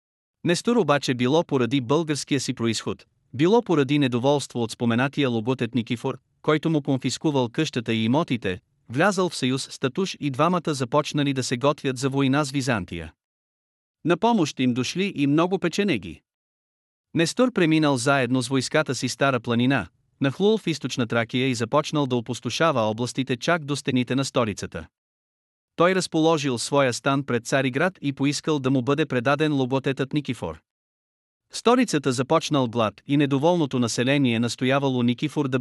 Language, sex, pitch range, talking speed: Bulgarian, male, 125-155 Hz, 145 wpm